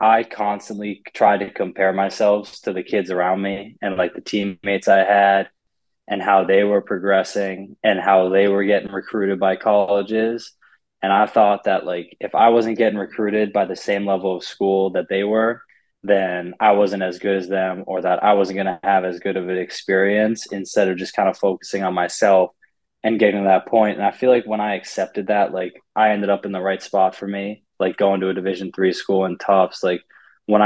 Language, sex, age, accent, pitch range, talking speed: English, male, 20-39, American, 95-100 Hz, 215 wpm